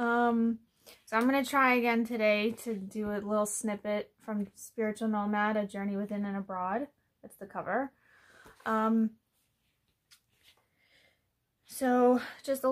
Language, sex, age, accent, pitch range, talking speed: English, female, 20-39, American, 195-230 Hz, 130 wpm